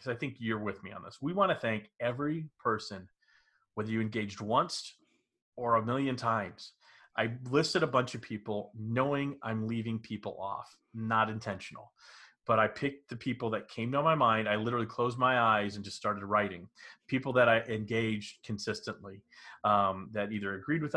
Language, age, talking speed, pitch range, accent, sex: English, 30-49, 175 wpm, 105-135 Hz, American, male